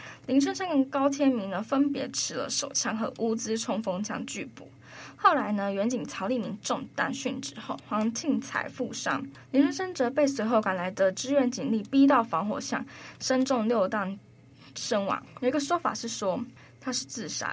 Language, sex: Chinese, female